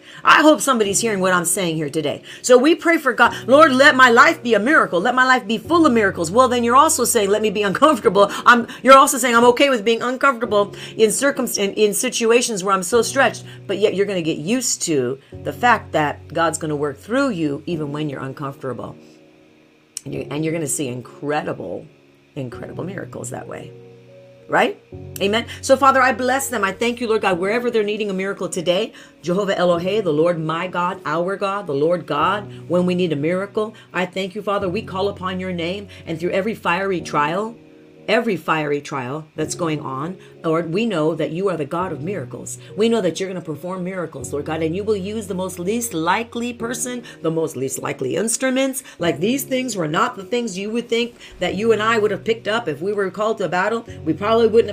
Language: English